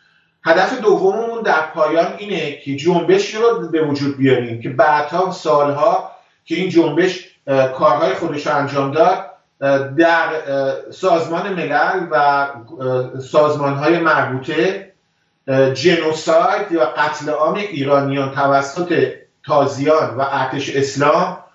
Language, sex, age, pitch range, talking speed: English, male, 50-69, 140-175 Hz, 110 wpm